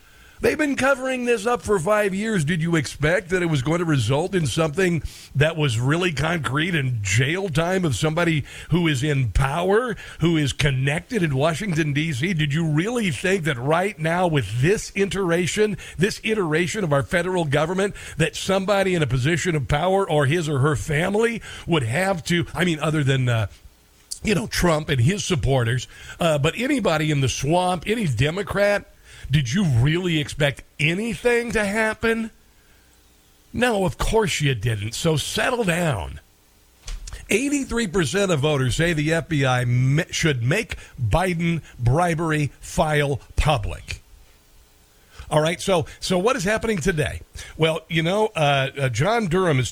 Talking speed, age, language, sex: 160 wpm, 50-69, English, male